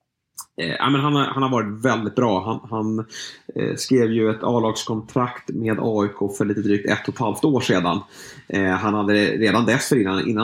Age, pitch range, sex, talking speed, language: 30-49, 105-125 Hz, male, 180 wpm, Swedish